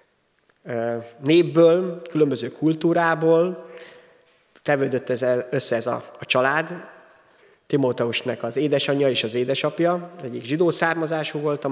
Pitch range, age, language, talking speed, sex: 125-165 Hz, 30-49, Hungarian, 100 wpm, male